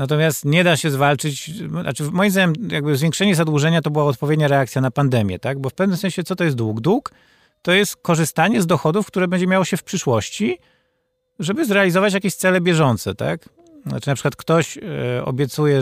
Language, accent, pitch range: Polish, native, 130-175 Hz